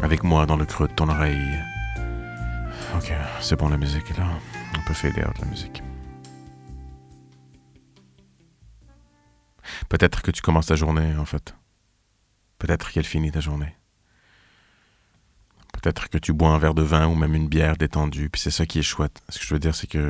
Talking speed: 180 wpm